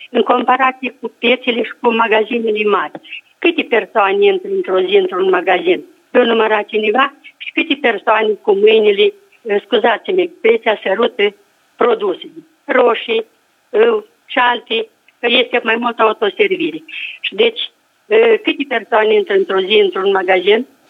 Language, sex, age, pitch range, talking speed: Romanian, female, 50-69, 230-365 Hz, 120 wpm